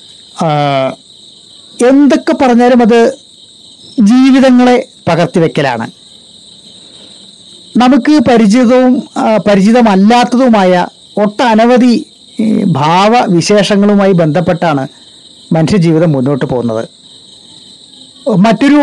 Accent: native